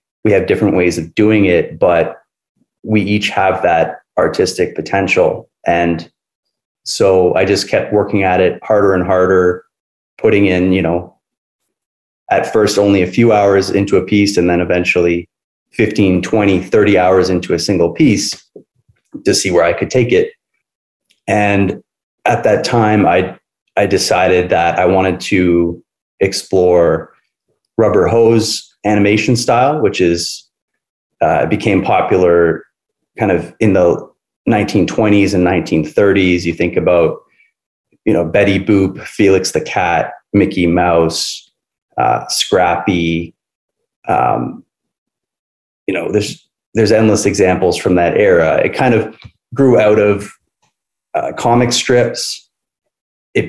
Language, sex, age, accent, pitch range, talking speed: English, male, 30-49, American, 90-105 Hz, 135 wpm